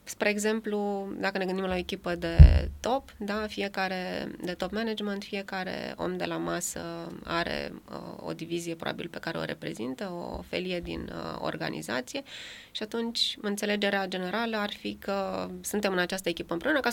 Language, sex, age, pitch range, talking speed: English, female, 20-39, 165-215 Hz, 165 wpm